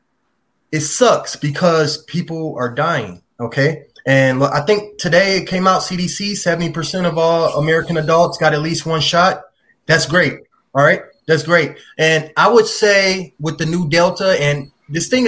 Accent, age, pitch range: American, 20-39, 145-200 Hz